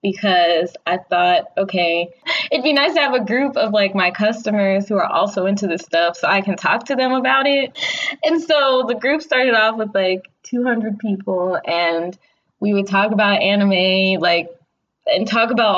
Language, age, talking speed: English, 20-39, 185 wpm